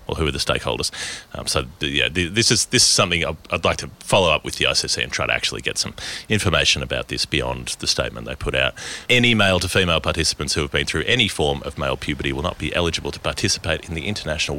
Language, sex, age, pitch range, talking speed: English, male, 30-49, 70-90 Hz, 245 wpm